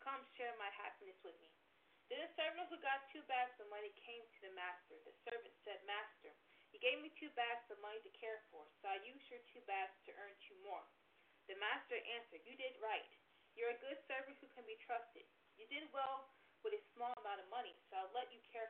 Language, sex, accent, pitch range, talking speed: English, female, American, 225-330 Hz, 230 wpm